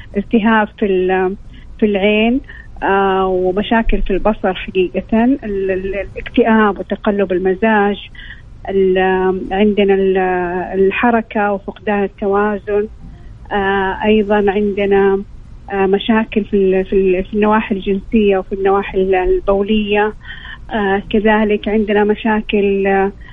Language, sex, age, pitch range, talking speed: Arabic, female, 40-59, 195-220 Hz, 65 wpm